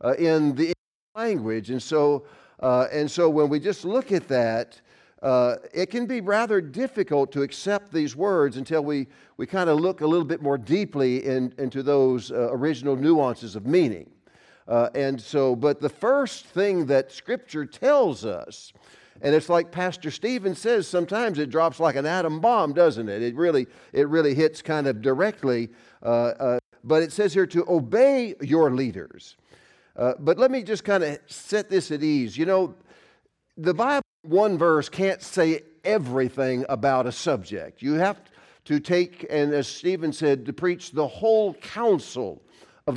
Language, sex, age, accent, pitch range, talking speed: English, male, 50-69, American, 135-185 Hz, 175 wpm